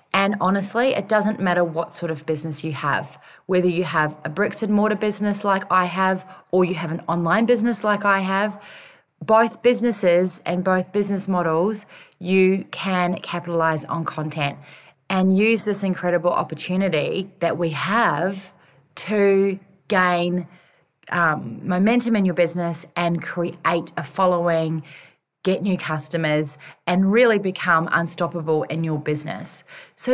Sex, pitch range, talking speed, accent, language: female, 170-205 Hz, 145 wpm, Australian, English